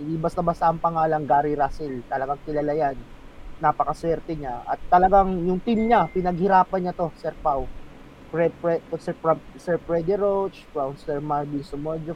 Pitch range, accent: 150-185 Hz, native